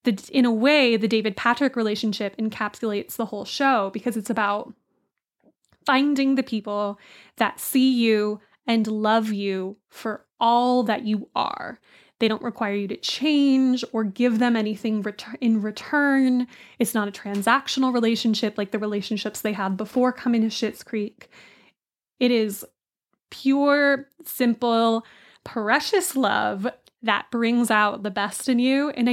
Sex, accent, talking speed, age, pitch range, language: female, American, 140 wpm, 20-39, 215-250 Hz, English